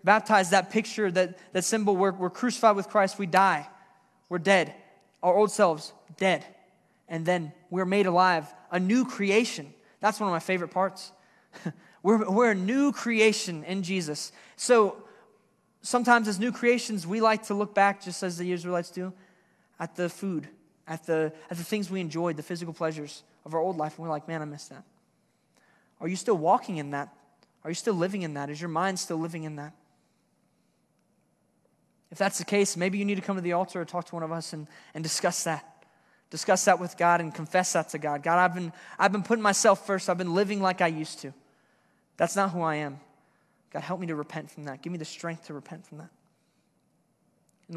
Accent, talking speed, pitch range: American, 205 wpm, 165-200 Hz